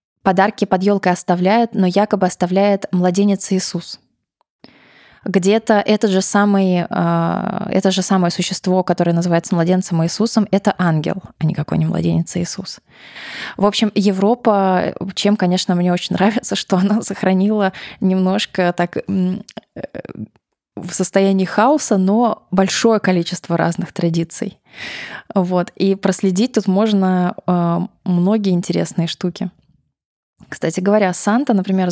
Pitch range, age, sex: 175-210 Hz, 20-39, female